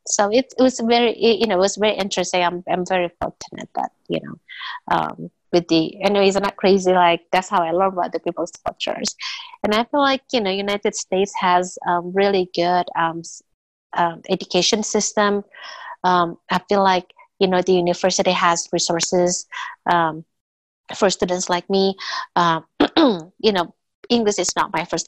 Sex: female